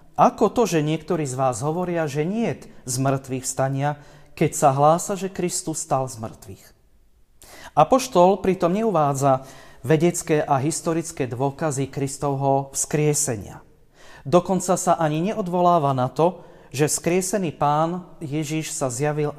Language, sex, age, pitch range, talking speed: Slovak, male, 40-59, 135-170 Hz, 130 wpm